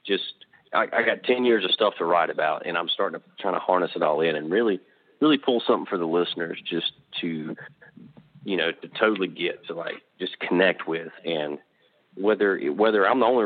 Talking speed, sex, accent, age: 210 wpm, male, American, 40-59